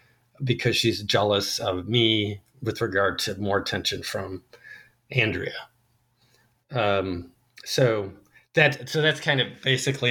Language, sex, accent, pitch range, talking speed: English, male, American, 105-125 Hz, 120 wpm